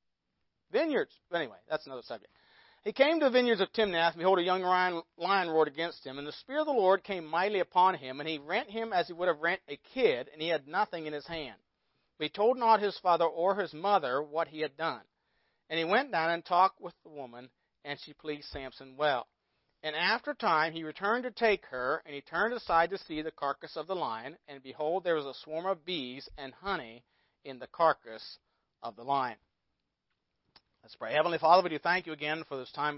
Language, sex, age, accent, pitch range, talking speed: English, male, 40-59, American, 140-180 Hz, 220 wpm